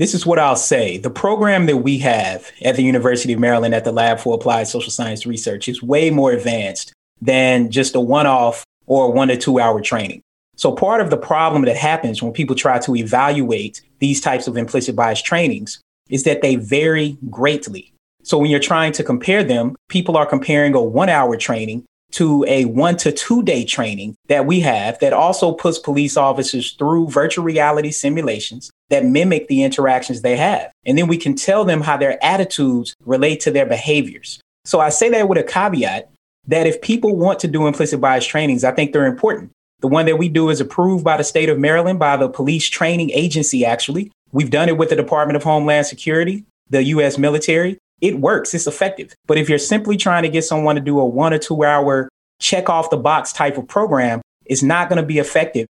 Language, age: English, 30-49